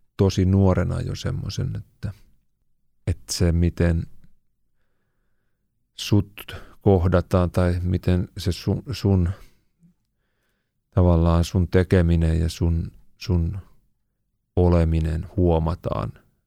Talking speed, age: 85 wpm, 30-49